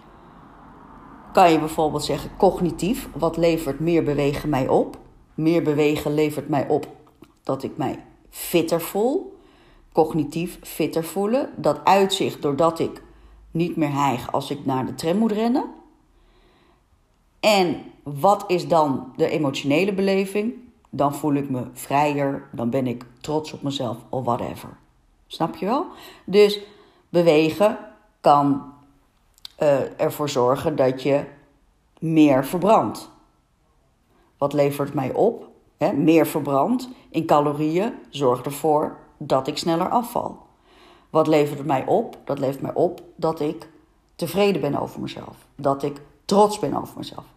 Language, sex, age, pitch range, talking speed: Dutch, female, 40-59, 145-195 Hz, 135 wpm